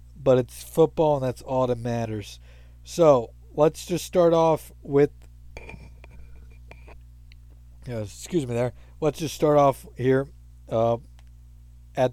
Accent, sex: American, male